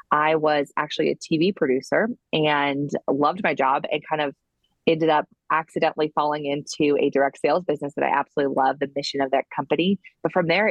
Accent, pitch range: American, 140-165 Hz